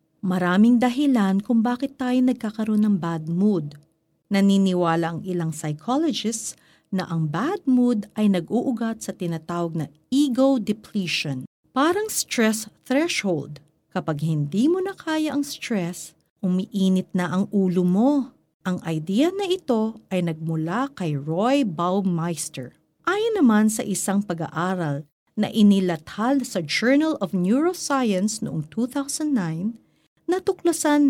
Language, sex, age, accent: Filipino, female, 50-69, native